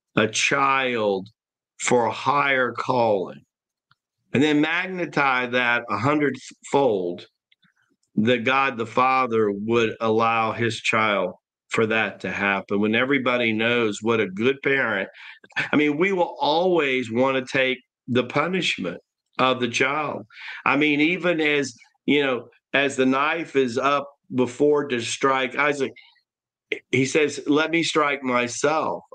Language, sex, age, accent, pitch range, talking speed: English, male, 50-69, American, 120-145 Hz, 135 wpm